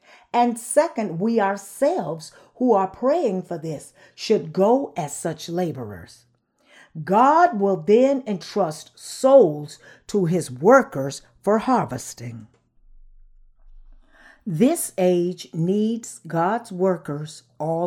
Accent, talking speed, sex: American, 100 wpm, female